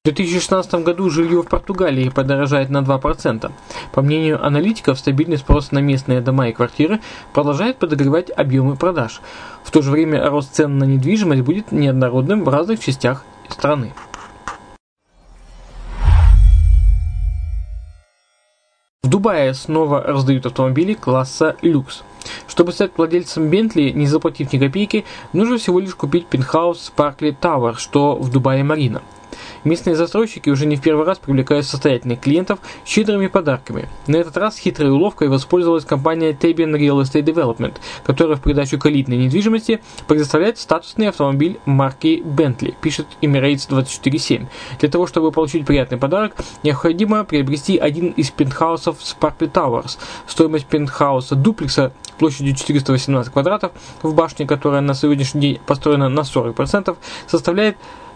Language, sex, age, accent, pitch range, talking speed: Russian, male, 20-39, native, 135-170 Hz, 135 wpm